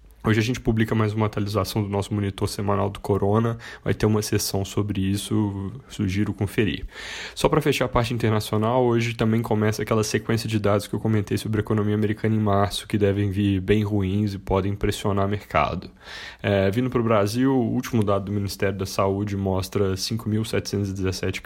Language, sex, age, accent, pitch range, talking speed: Portuguese, male, 10-29, Brazilian, 95-110 Hz, 185 wpm